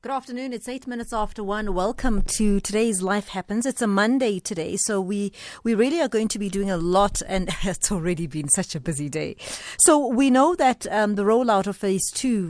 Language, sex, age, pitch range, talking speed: English, female, 30-49, 160-205 Hz, 215 wpm